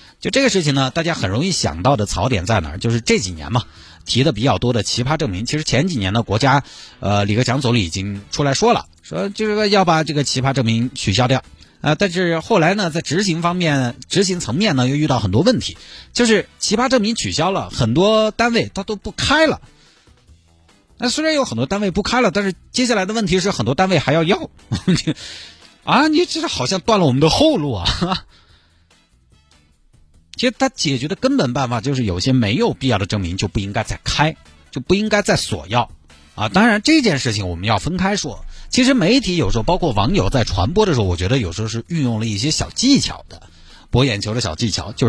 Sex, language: male, Chinese